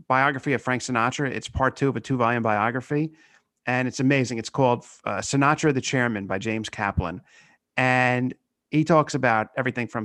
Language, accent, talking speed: English, American, 175 wpm